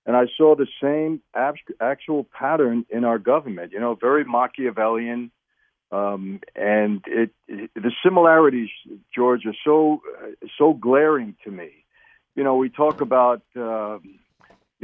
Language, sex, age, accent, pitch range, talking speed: English, male, 50-69, American, 120-135 Hz, 130 wpm